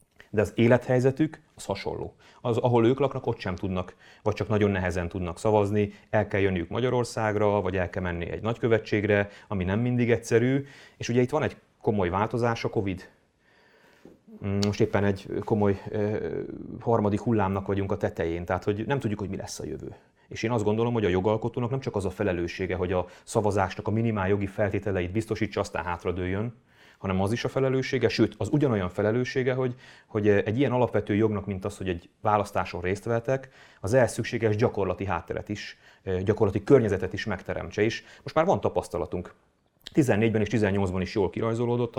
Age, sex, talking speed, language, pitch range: 30-49, male, 175 wpm, English, 100-115 Hz